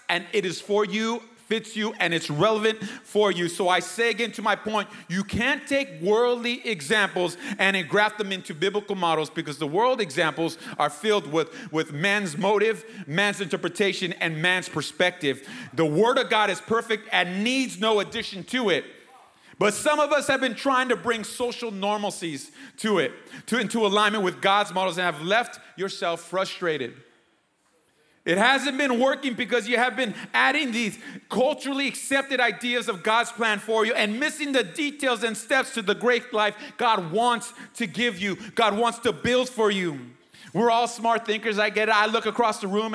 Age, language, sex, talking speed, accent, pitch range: 30-49, English, male, 185 wpm, American, 195-245 Hz